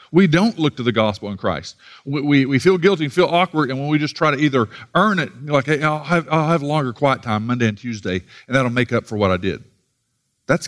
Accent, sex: American, male